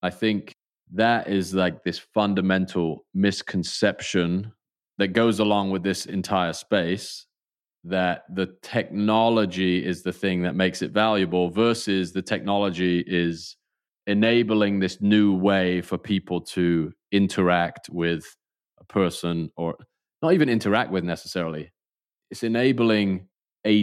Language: English